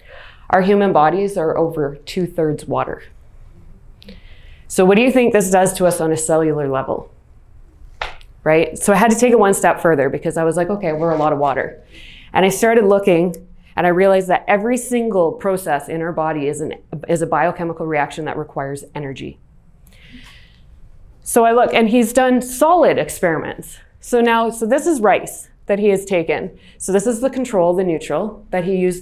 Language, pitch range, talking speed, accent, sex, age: English, 165-210 Hz, 185 wpm, American, female, 20-39